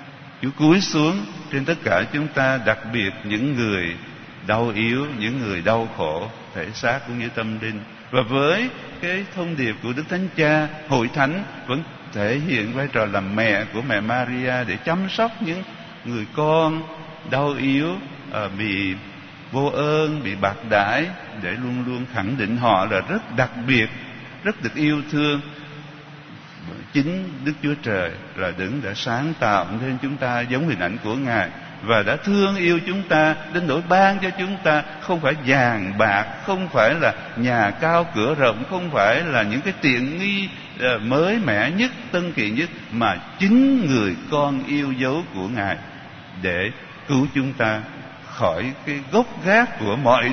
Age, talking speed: 60-79, 170 wpm